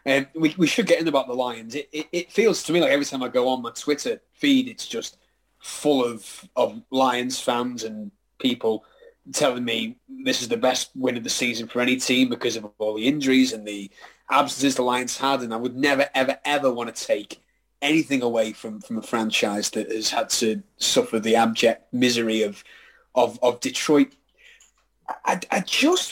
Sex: male